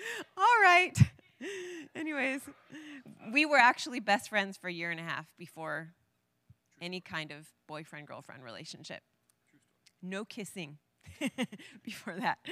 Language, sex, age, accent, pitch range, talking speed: English, female, 20-39, American, 175-220 Hz, 115 wpm